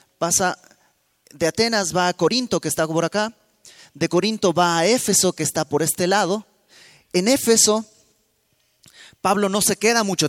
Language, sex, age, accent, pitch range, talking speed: Spanish, male, 30-49, Mexican, 155-205 Hz, 155 wpm